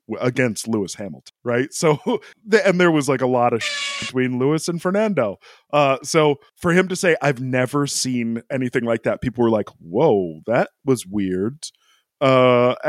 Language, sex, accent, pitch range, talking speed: English, male, American, 115-170 Hz, 170 wpm